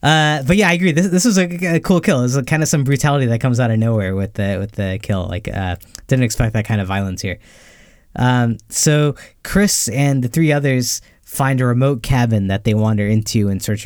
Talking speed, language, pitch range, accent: 240 wpm, English, 105-130 Hz, American